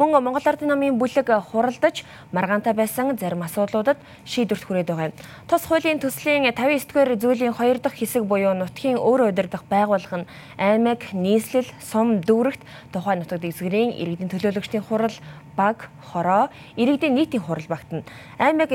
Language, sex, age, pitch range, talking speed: English, female, 20-39, 175-240 Hz, 135 wpm